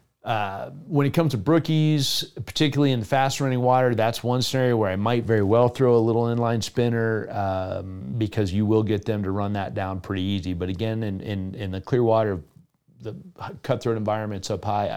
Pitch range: 100-120 Hz